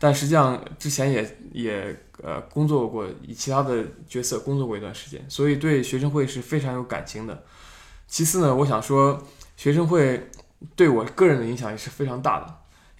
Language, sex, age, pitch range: Chinese, male, 20-39, 115-145 Hz